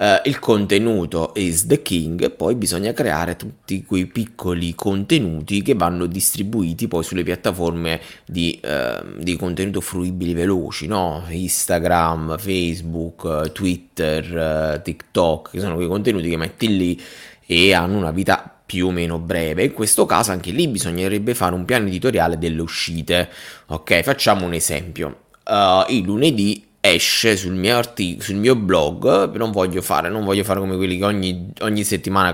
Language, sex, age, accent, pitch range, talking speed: Italian, male, 20-39, native, 85-100 Hz, 160 wpm